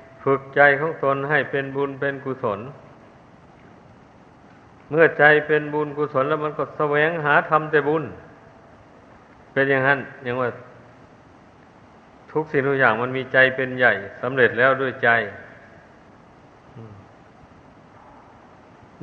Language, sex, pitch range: Thai, male, 130-145 Hz